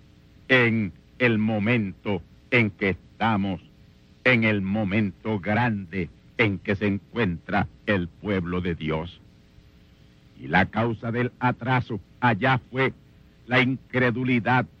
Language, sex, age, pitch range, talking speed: Spanish, male, 60-79, 100-130 Hz, 110 wpm